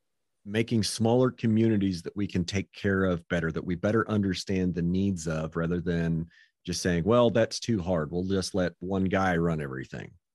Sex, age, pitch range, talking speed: male, 40-59, 95-120 Hz, 185 wpm